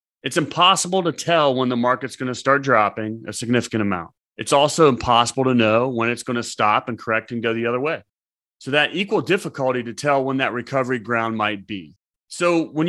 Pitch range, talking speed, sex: 115-145 Hz, 210 wpm, male